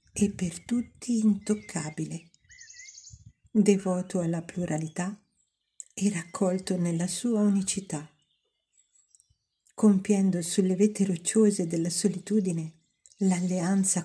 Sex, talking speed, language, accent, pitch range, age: female, 80 wpm, Italian, native, 170-205 Hz, 50-69